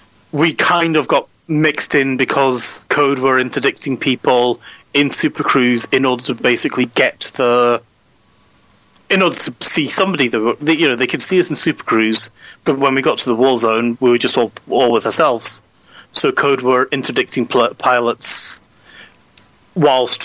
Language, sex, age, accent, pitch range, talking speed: English, male, 30-49, British, 120-140 Hz, 165 wpm